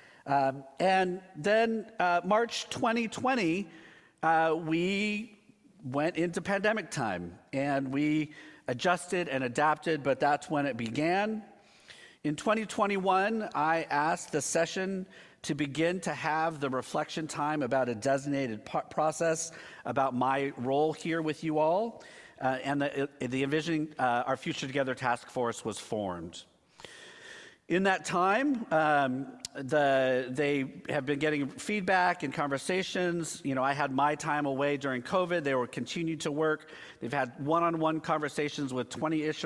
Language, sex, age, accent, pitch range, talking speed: English, male, 50-69, American, 140-185 Hz, 140 wpm